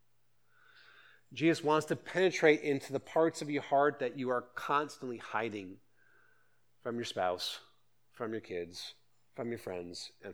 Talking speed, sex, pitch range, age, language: 145 wpm, male, 100-145 Hz, 40-59, English